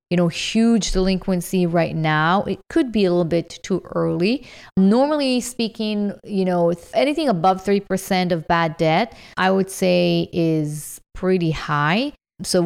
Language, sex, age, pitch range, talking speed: English, female, 30-49, 170-205 Hz, 145 wpm